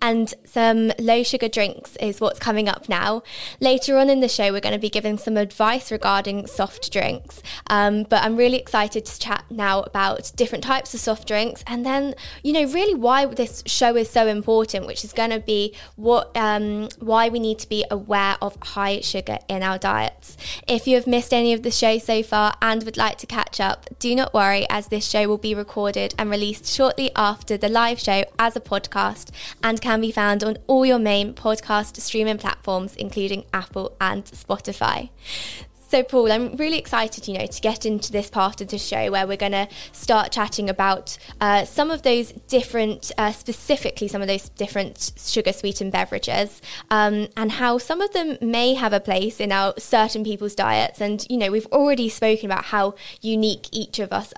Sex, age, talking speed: female, 20-39, 200 wpm